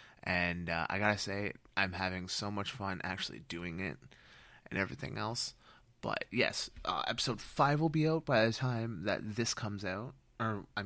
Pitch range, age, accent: 90-120 Hz, 20-39, American